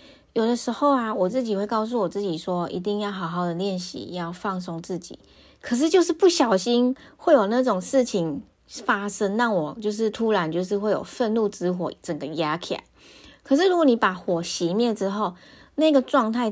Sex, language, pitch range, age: female, Chinese, 180-235 Hz, 20-39